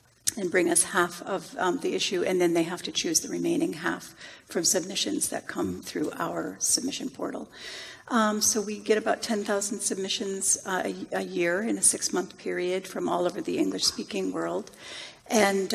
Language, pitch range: English, 195-270 Hz